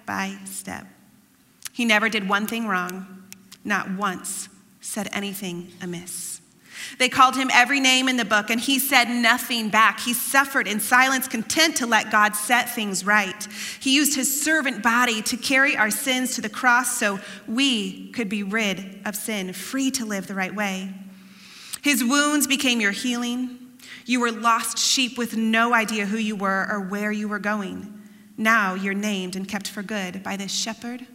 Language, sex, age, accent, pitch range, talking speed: English, female, 30-49, American, 200-245 Hz, 175 wpm